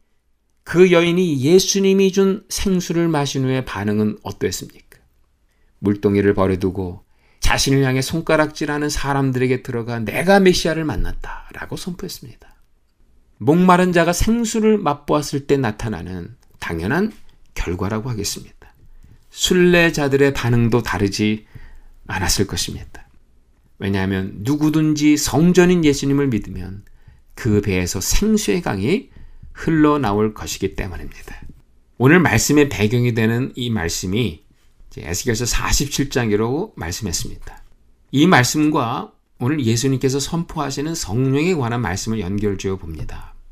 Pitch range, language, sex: 95-150 Hz, Korean, male